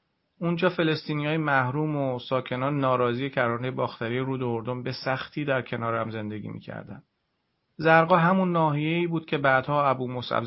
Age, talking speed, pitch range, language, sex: 40-59, 145 wpm, 120-140 Hz, Persian, male